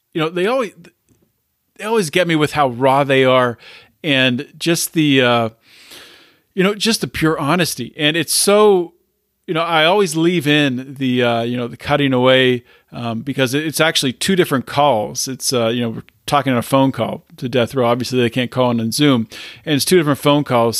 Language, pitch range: English, 120-155 Hz